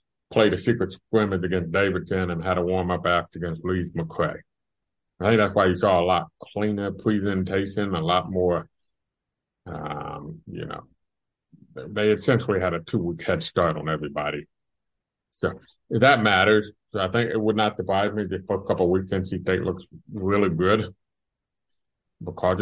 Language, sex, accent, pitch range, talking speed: English, male, American, 85-105 Hz, 170 wpm